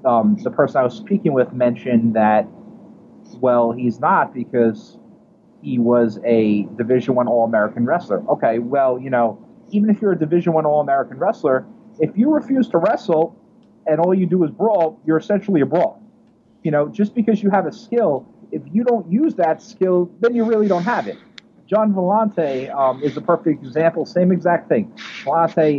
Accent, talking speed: American, 180 wpm